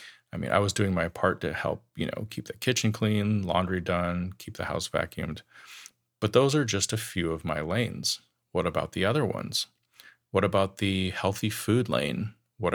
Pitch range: 90-115 Hz